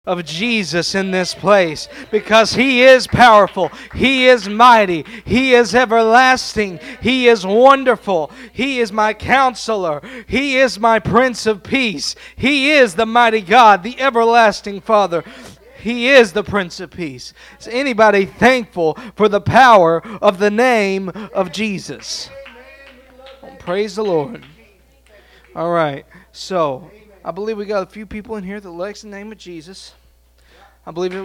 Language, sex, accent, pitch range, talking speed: English, male, American, 170-230 Hz, 150 wpm